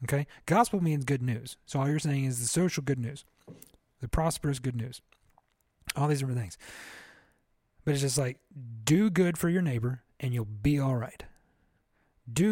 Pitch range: 125-160 Hz